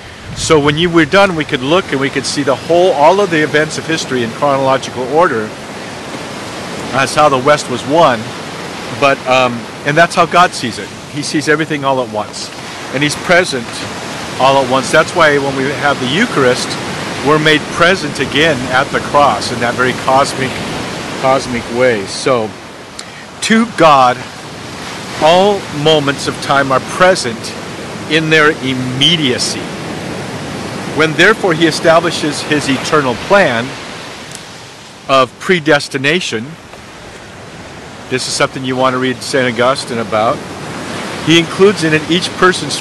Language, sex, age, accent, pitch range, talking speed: English, male, 50-69, American, 130-160 Hz, 150 wpm